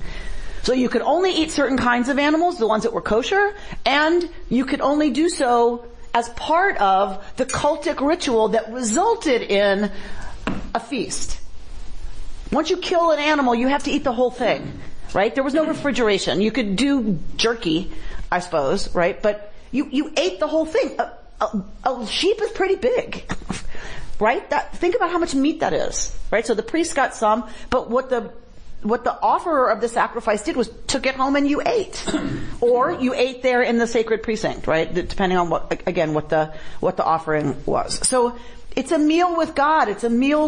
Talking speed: 190 wpm